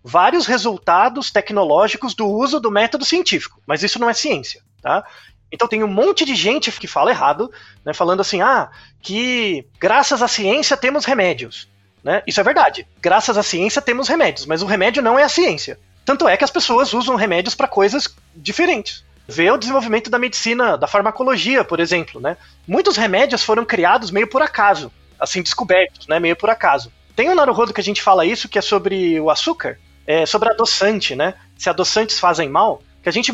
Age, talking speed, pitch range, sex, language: 20-39, 190 wpm, 185-250 Hz, male, Portuguese